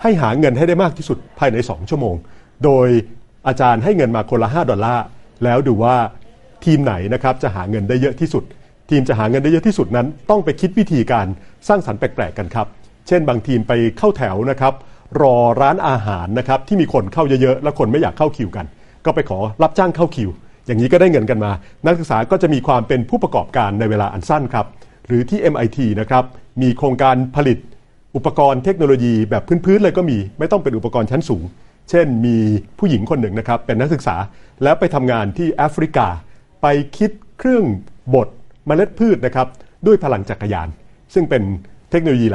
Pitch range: 110-145 Hz